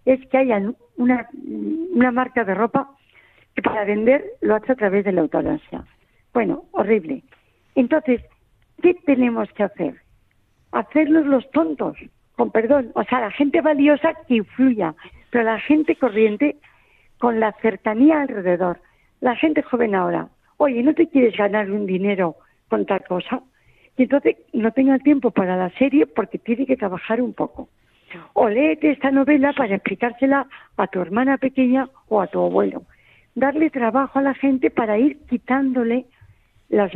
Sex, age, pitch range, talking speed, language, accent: female, 50-69, 210-275 Hz, 155 wpm, Spanish, Spanish